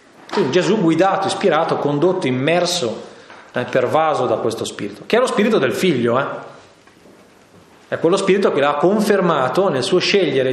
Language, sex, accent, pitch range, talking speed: Italian, male, native, 125-190 Hz, 150 wpm